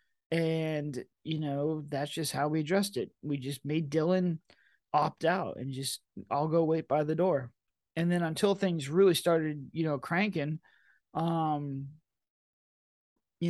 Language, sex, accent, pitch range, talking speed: English, male, American, 145-170 Hz, 150 wpm